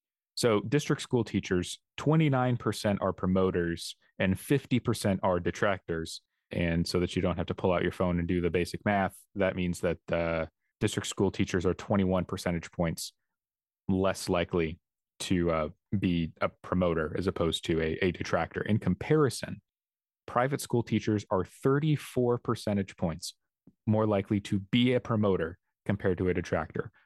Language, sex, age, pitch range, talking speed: English, male, 30-49, 90-105 Hz, 155 wpm